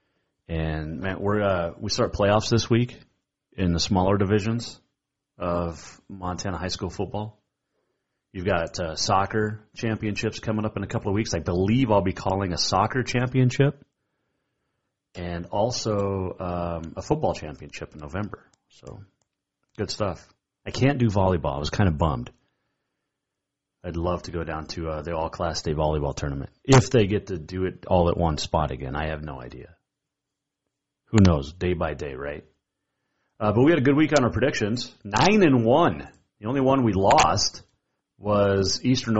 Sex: male